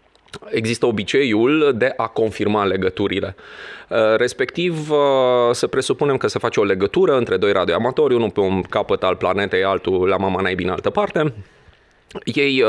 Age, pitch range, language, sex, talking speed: 30-49, 115-185 Hz, Romanian, male, 145 wpm